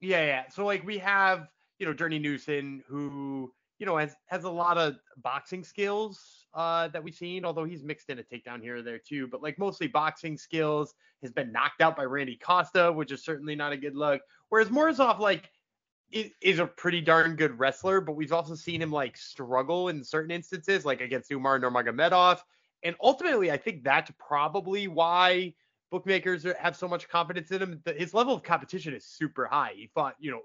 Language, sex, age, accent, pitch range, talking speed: English, male, 20-39, American, 145-185 Hz, 205 wpm